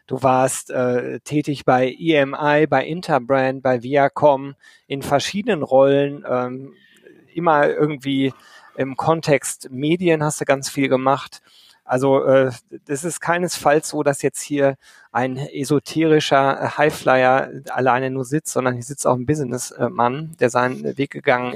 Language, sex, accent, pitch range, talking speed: German, male, German, 125-150 Hz, 135 wpm